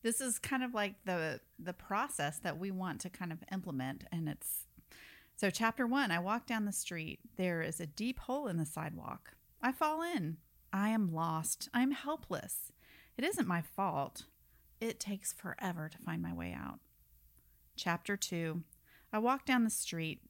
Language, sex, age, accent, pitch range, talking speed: English, female, 40-59, American, 160-230 Hz, 175 wpm